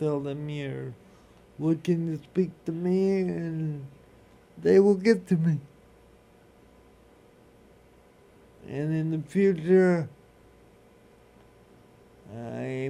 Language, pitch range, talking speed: English, 135-175 Hz, 90 wpm